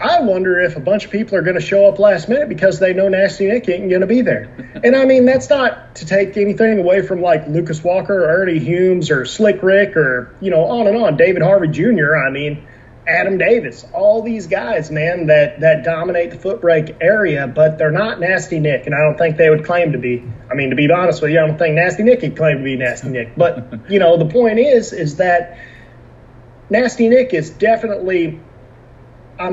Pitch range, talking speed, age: 145-195 Hz, 230 wpm, 30-49